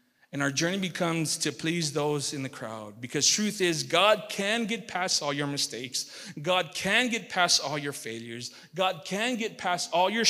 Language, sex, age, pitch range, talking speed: English, male, 40-59, 150-205 Hz, 190 wpm